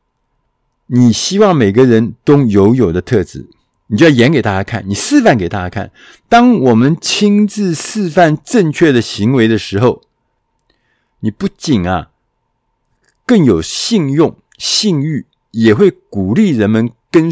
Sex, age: male, 50-69